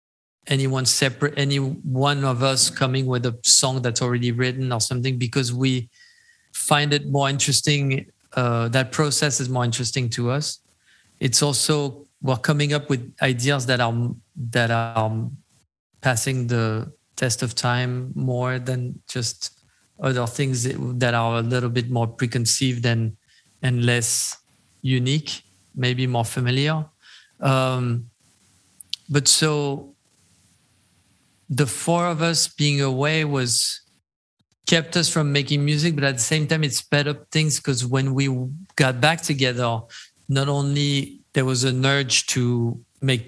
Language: English